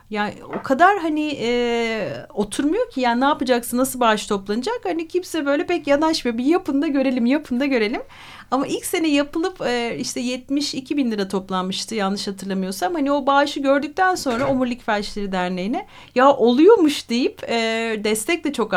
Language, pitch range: Turkish, 230-310 Hz